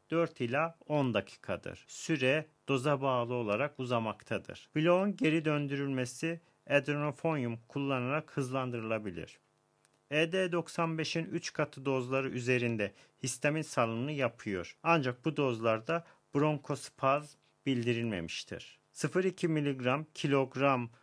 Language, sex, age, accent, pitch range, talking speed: Turkish, male, 40-59, native, 125-150 Hz, 90 wpm